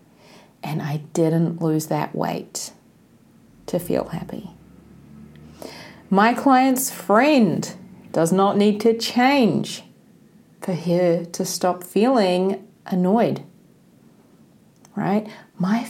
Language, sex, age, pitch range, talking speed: English, female, 40-59, 180-255 Hz, 95 wpm